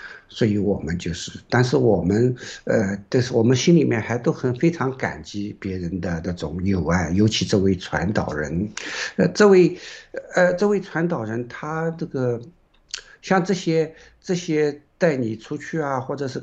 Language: Chinese